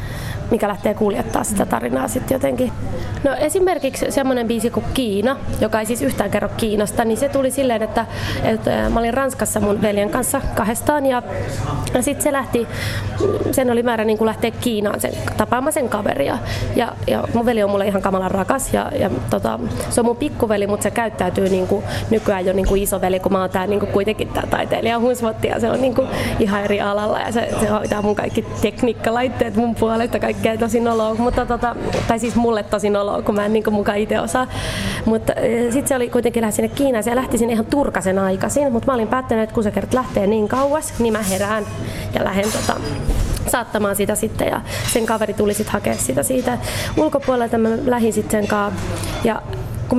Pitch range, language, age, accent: 205-245 Hz, Finnish, 20-39, native